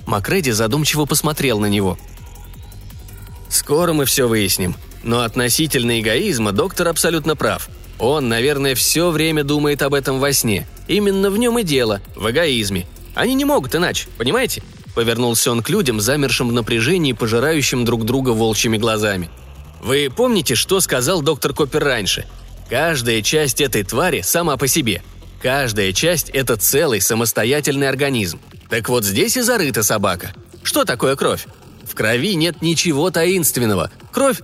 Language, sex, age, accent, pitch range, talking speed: Russian, male, 20-39, native, 105-160 Hz, 145 wpm